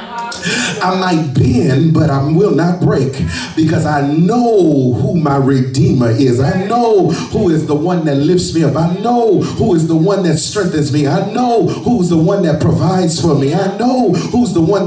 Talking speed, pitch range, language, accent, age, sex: 200 wpm, 160-210 Hz, English, American, 30-49, male